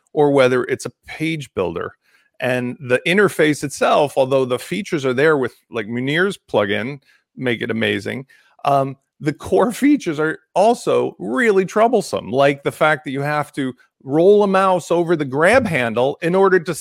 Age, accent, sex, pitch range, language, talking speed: 40-59, American, male, 155-215 Hz, English, 170 wpm